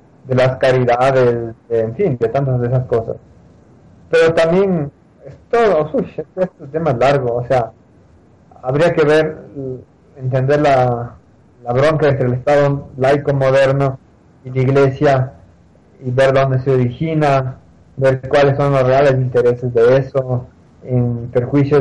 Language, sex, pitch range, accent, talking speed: Spanish, male, 115-135 Hz, Mexican, 150 wpm